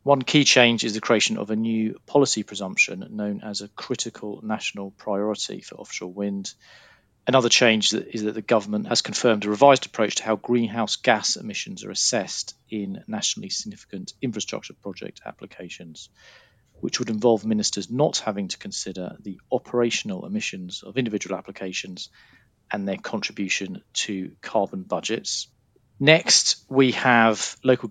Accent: British